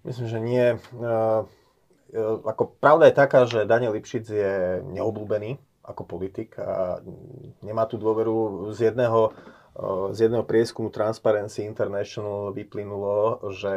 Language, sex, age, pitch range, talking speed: Slovak, male, 30-49, 95-110 Hz, 125 wpm